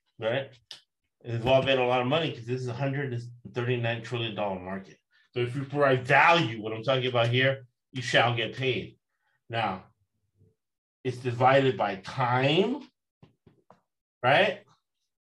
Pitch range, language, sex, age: 120-170 Hz, English, male, 40-59